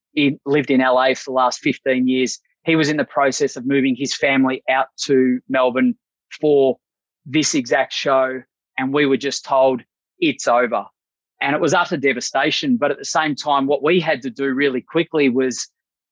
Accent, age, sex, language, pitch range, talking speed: Australian, 20-39, male, English, 130-160 Hz, 185 wpm